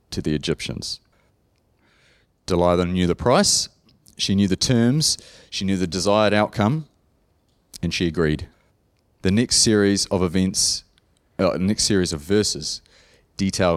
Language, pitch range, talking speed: English, 85-100 Hz, 130 wpm